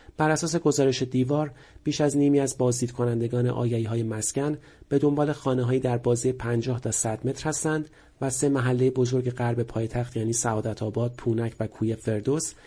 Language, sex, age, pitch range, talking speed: Persian, male, 40-59, 115-140 Hz, 160 wpm